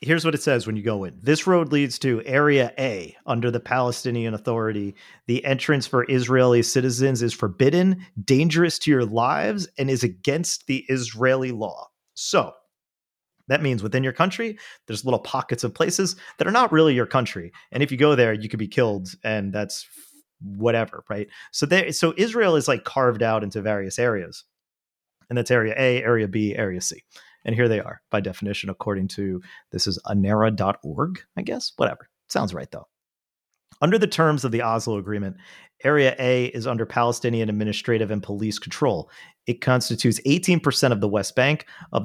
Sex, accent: male, American